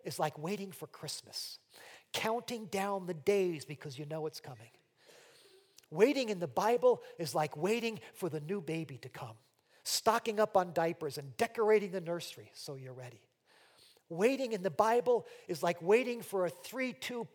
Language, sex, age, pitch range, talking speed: English, male, 40-59, 160-225 Hz, 165 wpm